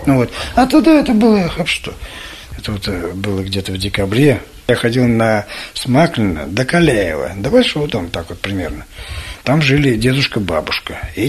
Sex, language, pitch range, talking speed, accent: male, Russian, 100-145 Hz, 165 wpm, native